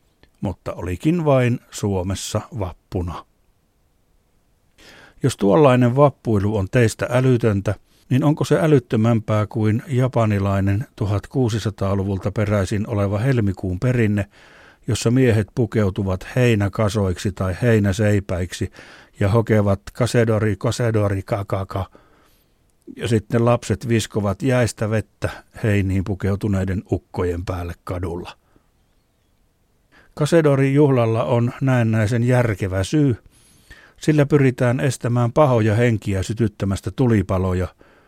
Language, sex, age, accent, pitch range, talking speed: Finnish, male, 60-79, native, 100-120 Hz, 90 wpm